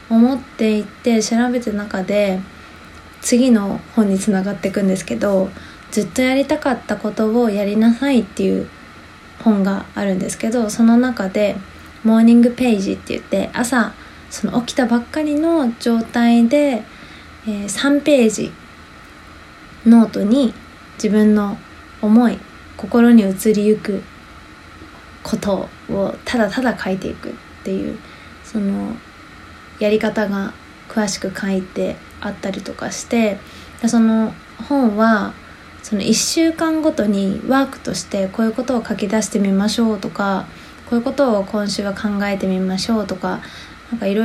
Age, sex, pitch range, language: 20-39, female, 195-235 Hz, Japanese